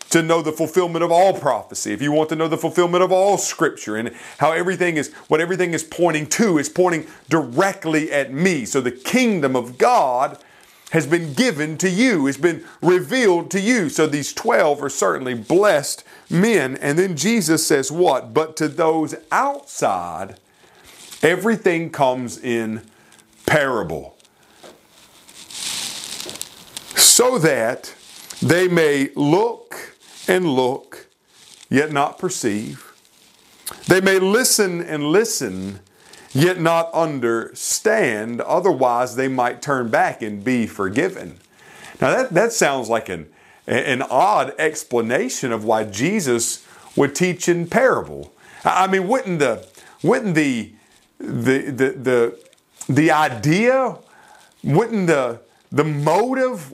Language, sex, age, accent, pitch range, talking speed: English, male, 40-59, American, 135-185 Hz, 130 wpm